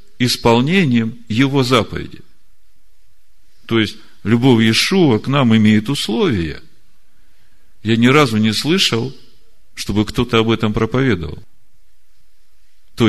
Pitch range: 100-120 Hz